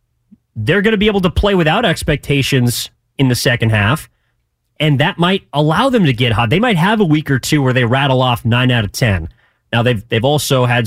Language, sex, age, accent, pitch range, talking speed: English, male, 30-49, American, 120-155 Hz, 225 wpm